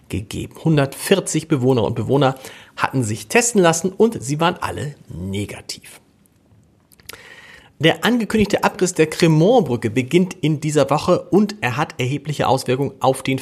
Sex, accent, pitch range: male, German, 125-175 Hz